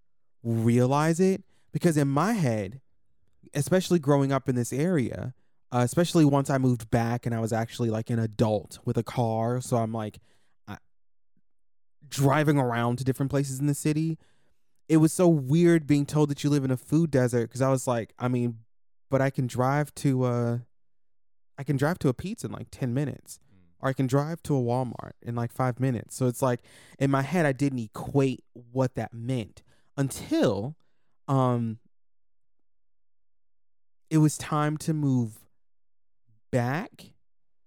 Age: 20-39